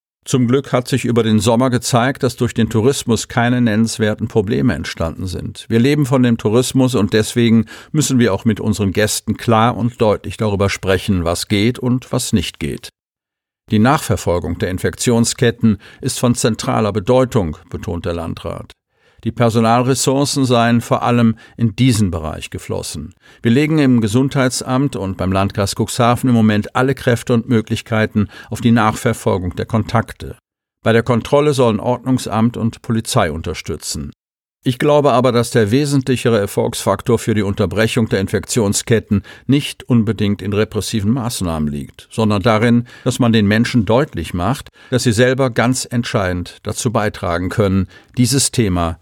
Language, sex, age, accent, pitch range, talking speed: German, male, 50-69, German, 100-125 Hz, 150 wpm